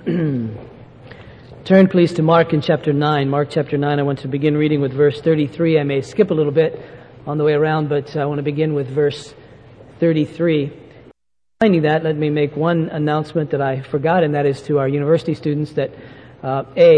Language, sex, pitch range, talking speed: English, male, 125-150 Hz, 195 wpm